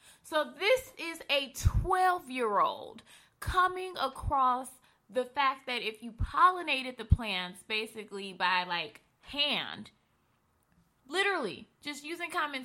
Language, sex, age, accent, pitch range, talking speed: English, female, 20-39, American, 175-245 Hz, 110 wpm